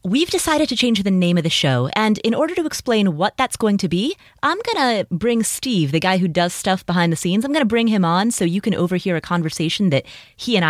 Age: 30-49